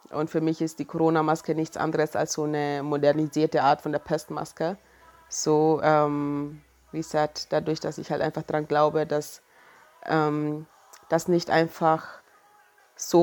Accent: German